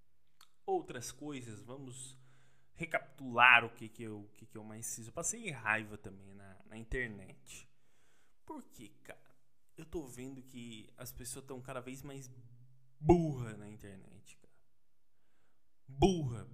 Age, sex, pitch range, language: 20-39, male, 115-140 Hz, Portuguese